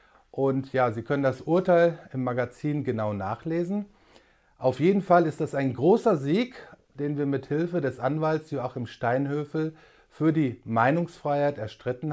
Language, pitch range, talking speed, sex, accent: German, 130-170 Hz, 150 wpm, male, German